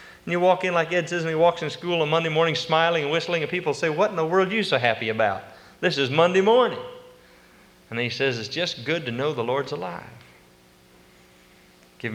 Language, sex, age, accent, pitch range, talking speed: English, male, 40-59, American, 110-165 Hz, 225 wpm